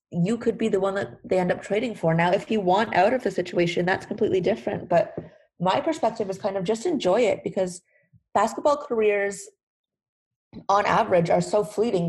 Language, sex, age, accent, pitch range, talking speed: English, female, 30-49, American, 180-225 Hz, 195 wpm